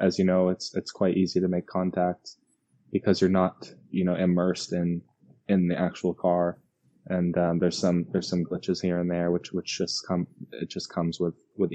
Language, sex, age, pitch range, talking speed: Swedish, male, 10-29, 90-100 Hz, 205 wpm